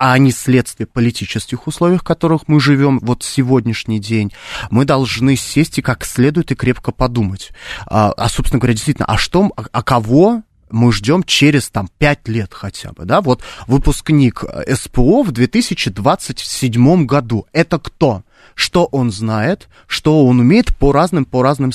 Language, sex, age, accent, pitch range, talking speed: Russian, male, 20-39, native, 115-145 Hz, 155 wpm